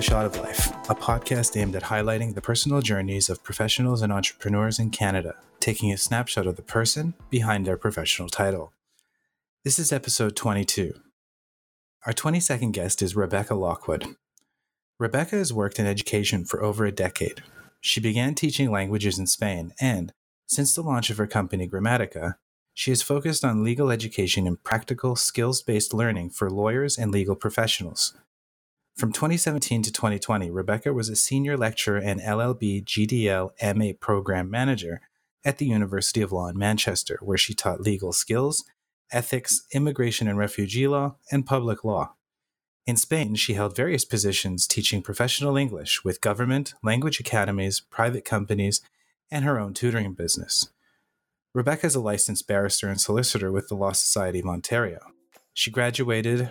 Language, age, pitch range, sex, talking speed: English, 30-49, 100-125 Hz, male, 155 wpm